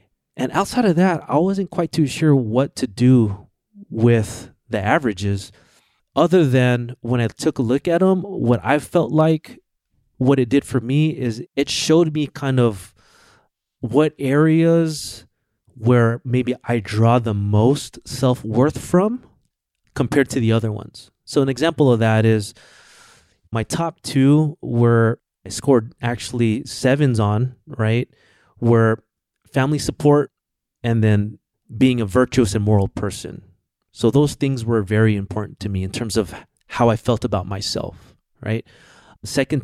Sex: male